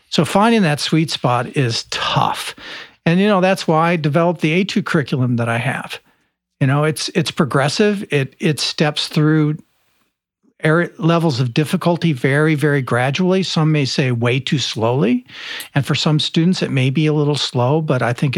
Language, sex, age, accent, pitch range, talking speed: English, male, 50-69, American, 135-165 Hz, 180 wpm